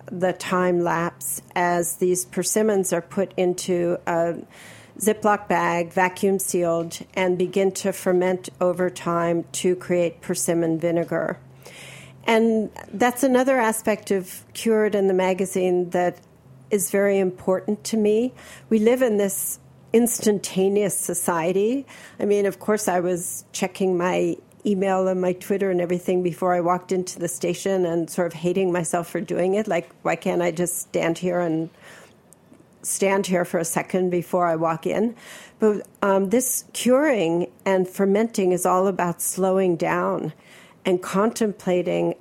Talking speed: 145 wpm